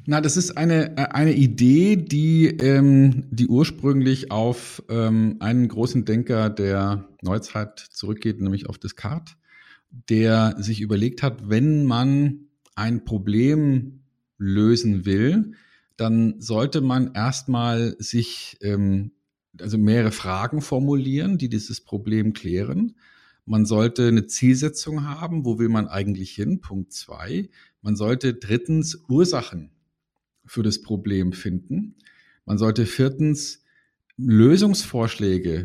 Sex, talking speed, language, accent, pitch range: male, 115 wpm, German, German, 110-140 Hz